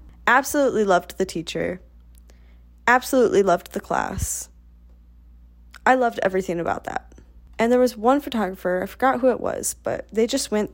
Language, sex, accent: English, female, American